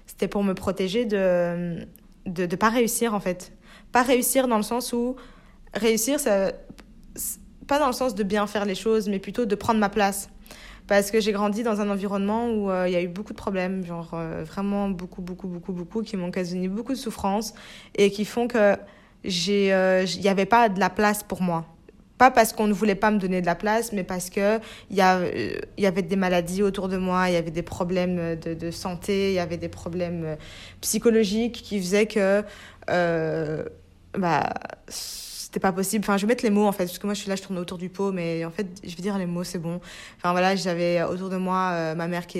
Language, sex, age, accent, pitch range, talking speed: French, female, 20-39, French, 175-210 Hz, 230 wpm